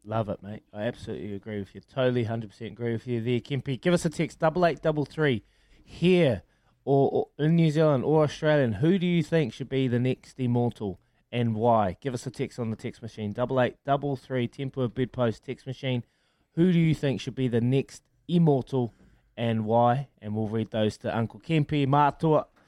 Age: 20-39